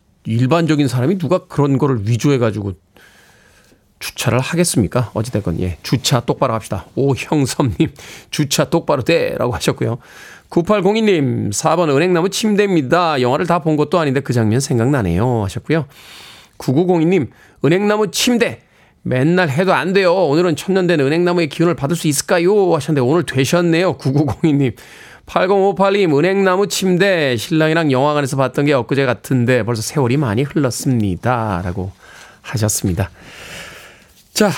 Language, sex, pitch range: Korean, male, 125-180 Hz